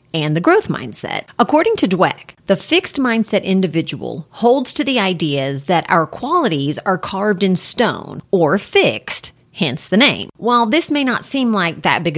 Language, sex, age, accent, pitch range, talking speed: English, female, 30-49, American, 155-225 Hz, 170 wpm